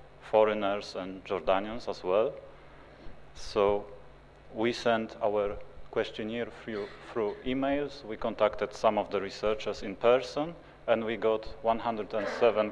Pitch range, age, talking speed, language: 95-115 Hz, 30-49, 120 wpm, English